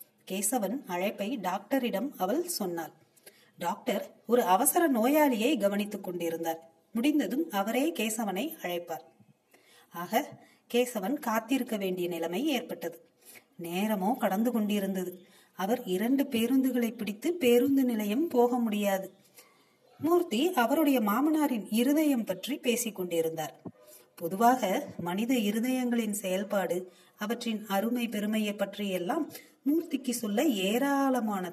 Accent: native